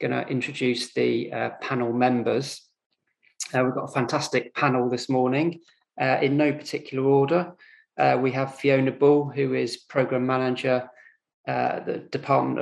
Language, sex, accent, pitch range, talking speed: English, male, British, 130-150 Hz, 150 wpm